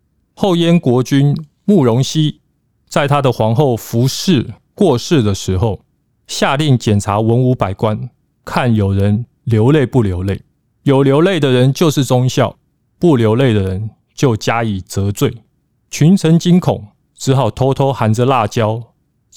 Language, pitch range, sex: Chinese, 110-145 Hz, male